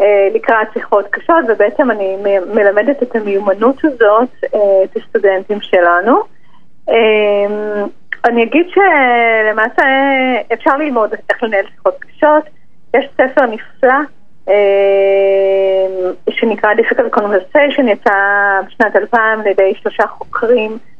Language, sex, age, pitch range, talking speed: Hebrew, female, 30-49, 200-255 Hz, 95 wpm